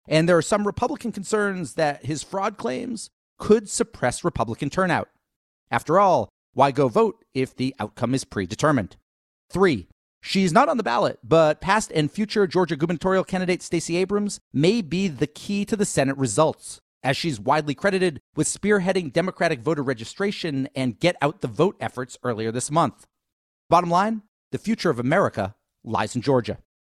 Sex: male